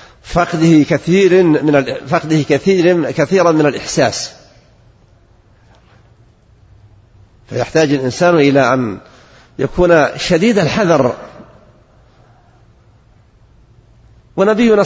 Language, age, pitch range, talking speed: Arabic, 50-69, 115-170 Hz, 70 wpm